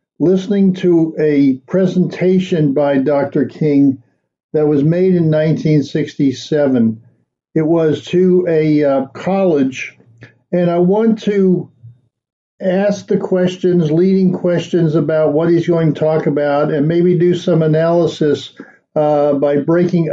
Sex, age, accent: male, 60-79, American